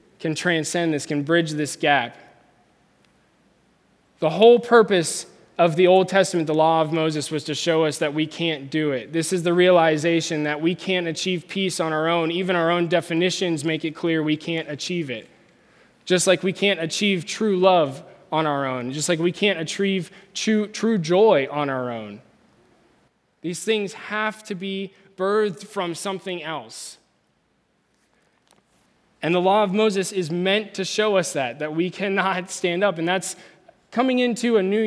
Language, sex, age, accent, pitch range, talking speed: English, male, 20-39, American, 155-195 Hz, 175 wpm